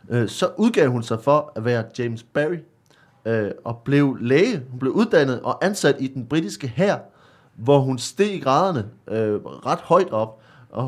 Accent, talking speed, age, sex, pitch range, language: native, 175 wpm, 30-49, male, 120-150 Hz, Danish